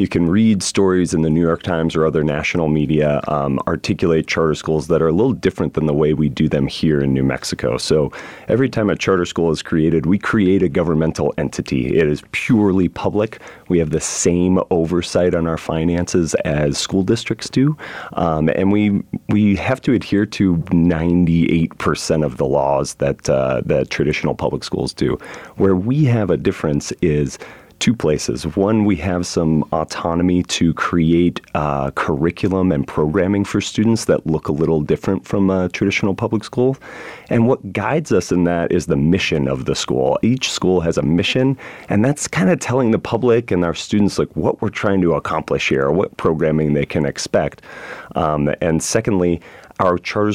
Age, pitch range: 30-49, 75-100 Hz